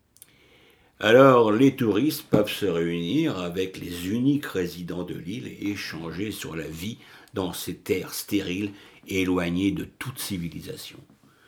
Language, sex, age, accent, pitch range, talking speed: French, male, 60-79, French, 95-140 Hz, 135 wpm